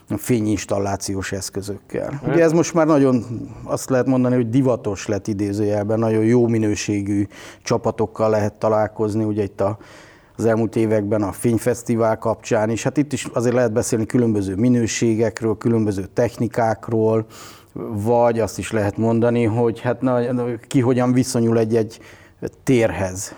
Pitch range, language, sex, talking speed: 105-120 Hz, Hungarian, male, 140 wpm